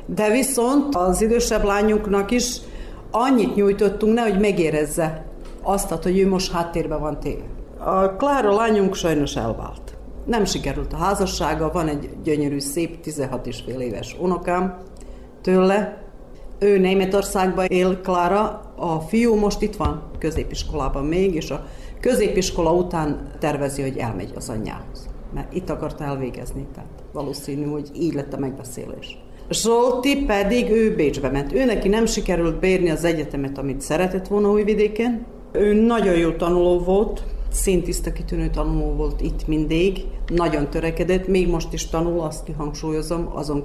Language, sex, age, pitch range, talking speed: Hungarian, female, 50-69, 150-200 Hz, 140 wpm